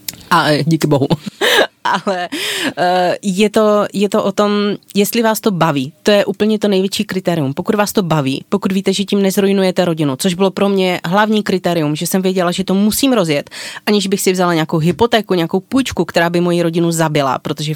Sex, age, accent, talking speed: female, 30-49, native, 190 wpm